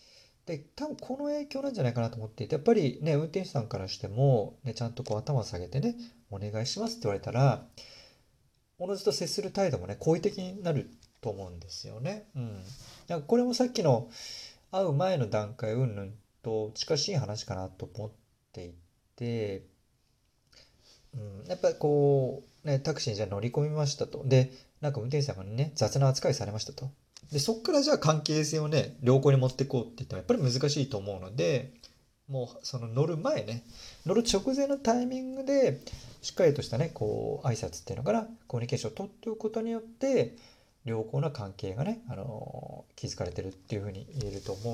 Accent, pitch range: native, 115-160 Hz